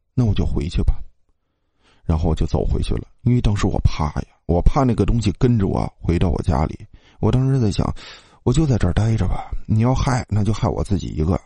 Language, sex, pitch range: Chinese, male, 85-115 Hz